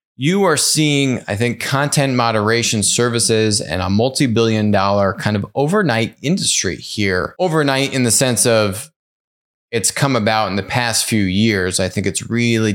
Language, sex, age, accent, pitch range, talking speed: English, male, 20-39, American, 100-125 Hz, 155 wpm